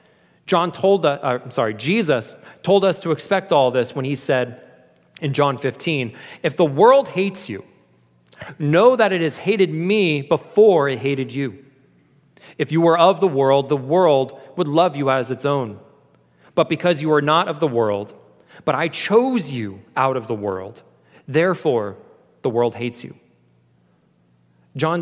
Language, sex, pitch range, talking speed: English, male, 125-175 Hz, 165 wpm